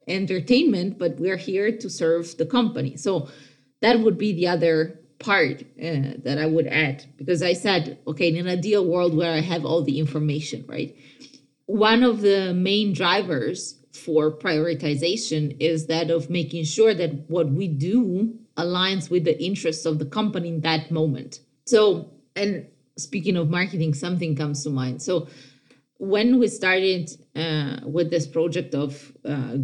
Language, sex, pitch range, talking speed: English, female, 145-185 Hz, 160 wpm